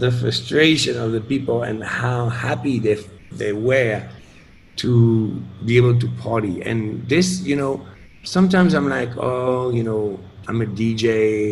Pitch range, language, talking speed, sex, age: 105-125 Hz, Finnish, 150 wpm, male, 50-69